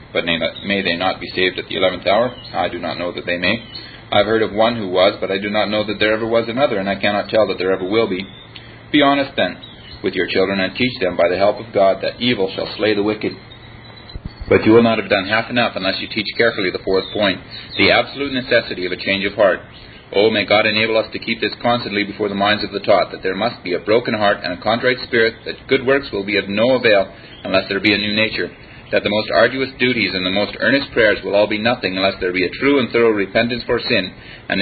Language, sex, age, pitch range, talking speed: English, male, 40-59, 100-120 Hz, 260 wpm